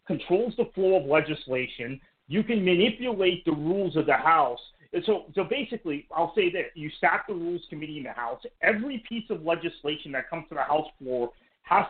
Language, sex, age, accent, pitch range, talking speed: English, male, 40-59, American, 130-190 Hz, 195 wpm